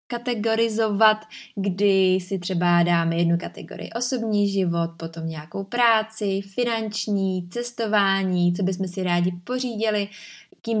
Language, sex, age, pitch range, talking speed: Czech, female, 20-39, 190-220 Hz, 110 wpm